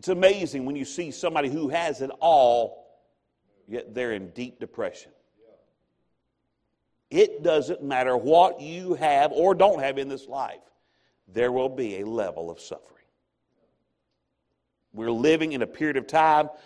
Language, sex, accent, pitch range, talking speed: English, male, American, 120-160 Hz, 150 wpm